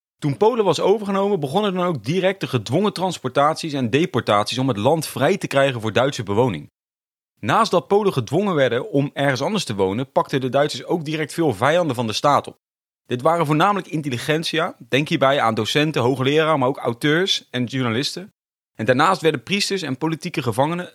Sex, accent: male, Dutch